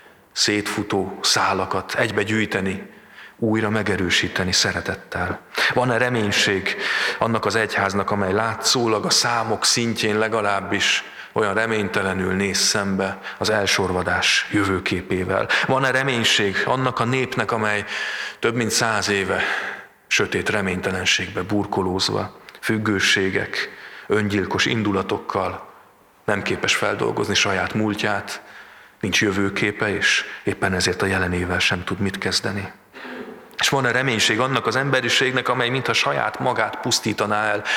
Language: Hungarian